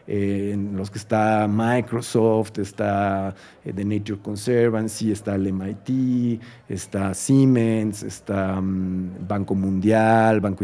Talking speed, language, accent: 100 wpm, Spanish, Mexican